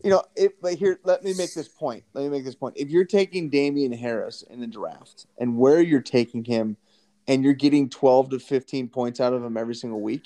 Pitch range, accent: 120-155 Hz, American